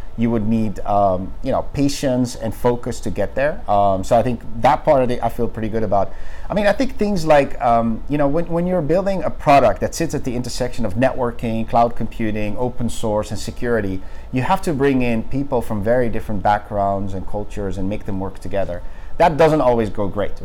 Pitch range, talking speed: 105-130 Hz, 220 wpm